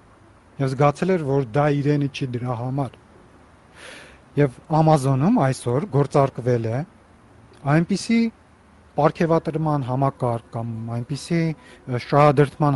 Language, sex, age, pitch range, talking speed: Russian, male, 40-59, 125-160 Hz, 85 wpm